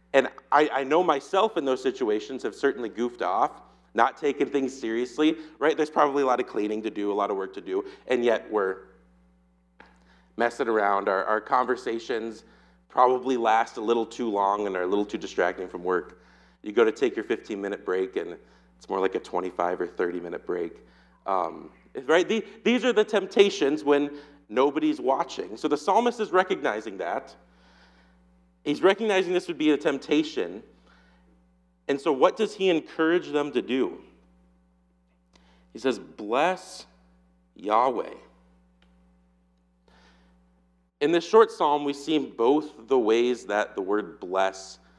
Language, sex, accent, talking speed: English, male, American, 155 wpm